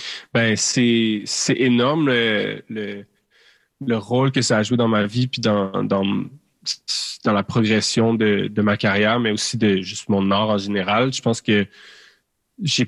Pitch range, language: 105-120 Hz, French